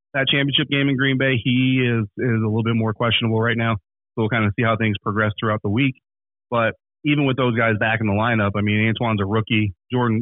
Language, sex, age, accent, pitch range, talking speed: English, male, 30-49, American, 105-120 Hz, 245 wpm